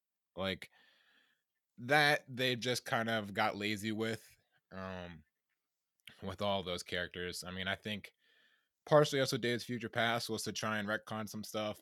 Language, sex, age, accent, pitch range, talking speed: English, male, 20-39, American, 95-115 Hz, 150 wpm